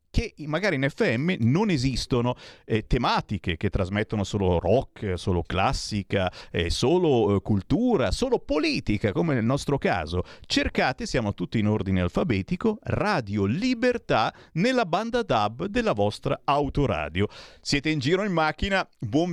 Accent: native